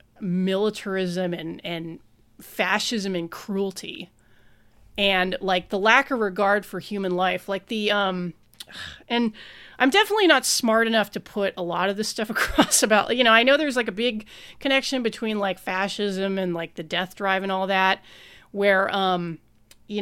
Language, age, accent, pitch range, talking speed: English, 30-49, American, 185-225 Hz, 170 wpm